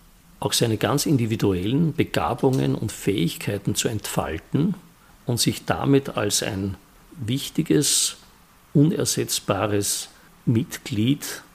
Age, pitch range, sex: 50-69, 105-135 Hz, male